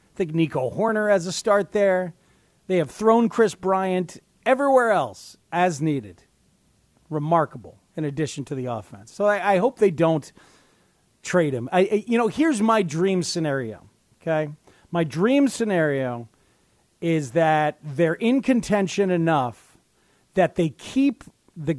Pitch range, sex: 150-200 Hz, male